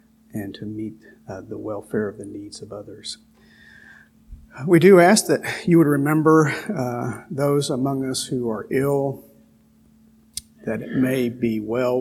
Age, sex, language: 50-69, male, English